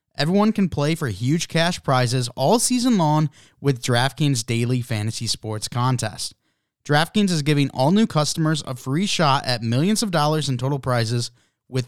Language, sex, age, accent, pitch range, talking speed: English, male, 20-39, American, 120-155 Hz, 165 wpm